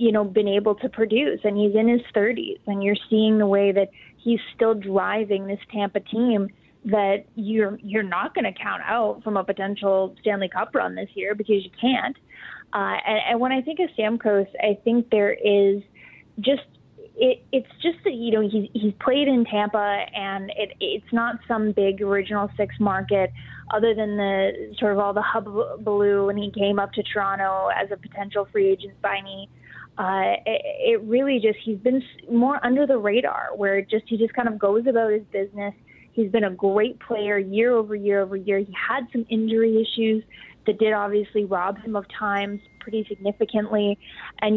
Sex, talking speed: female, 195 wpm